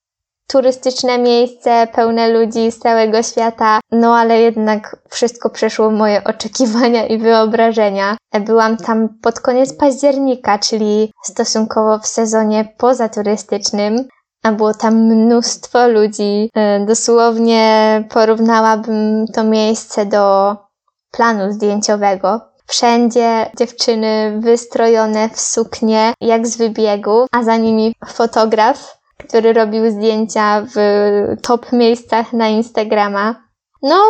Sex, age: female, 20-39